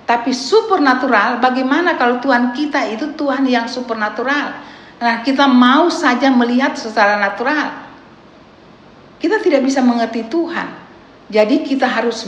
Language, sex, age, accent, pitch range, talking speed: Indonesian, female, 50-69, native, 170-230 Hz, 120 wpm